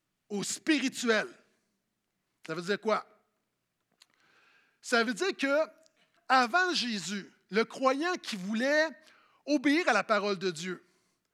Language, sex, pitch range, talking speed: French, male, 215-280 Hz, 115 wpm